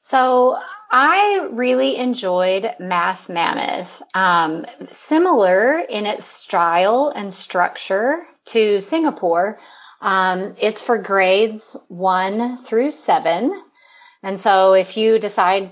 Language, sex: English, female